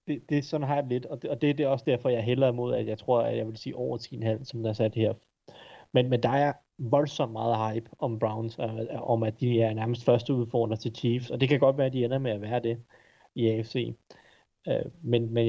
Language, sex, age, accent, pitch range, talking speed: Danish, male, 30-49, native, 115-135 Hz, 270 wpm